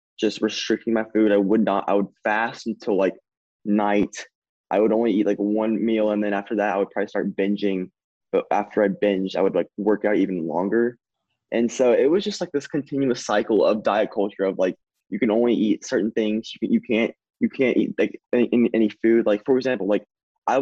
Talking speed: 215 wpm